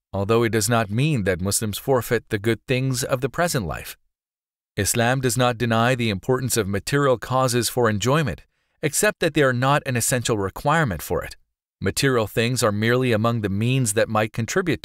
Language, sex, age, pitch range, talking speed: English, male, 40-59, 110-135 Hz, 185 wpm